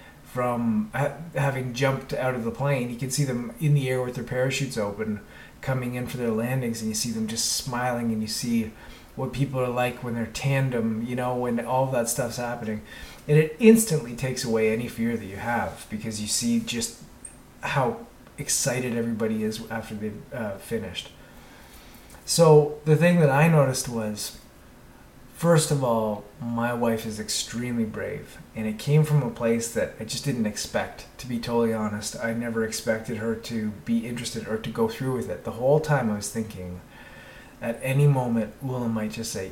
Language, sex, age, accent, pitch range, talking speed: English, male, 30-49, American, 110-135 Hz, 190 wpm